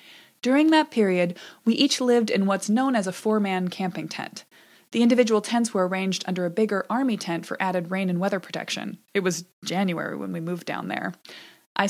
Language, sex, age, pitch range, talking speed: English, female, 20-39, 185-235 Hz, 195 wpm